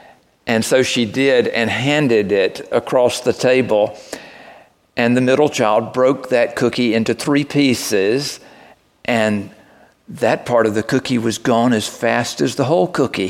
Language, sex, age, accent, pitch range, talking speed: English, male, 50-69, American, 115-150 Hz, 155 wpm